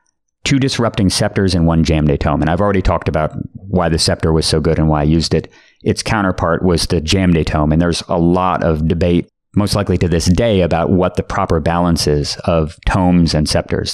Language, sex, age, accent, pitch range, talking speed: English, male, 30-49, American, 80-95 Hz, 225 wpm